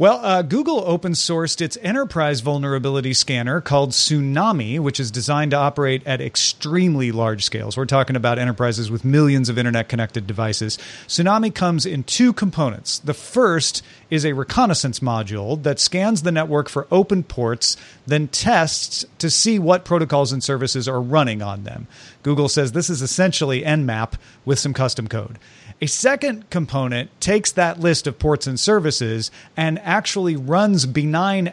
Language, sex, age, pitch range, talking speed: English, male, 40-59, 125-170 Hz, 155 wpm